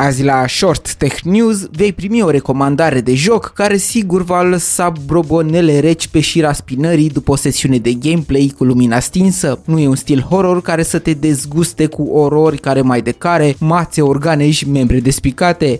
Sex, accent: male, native